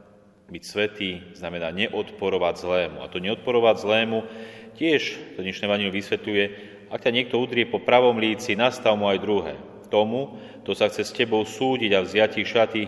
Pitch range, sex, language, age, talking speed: 95-110 Hz, male, Slovak, 30-49, 170 wpm